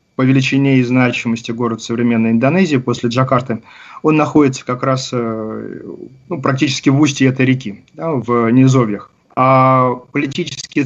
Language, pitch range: Russian, 120-135 Hz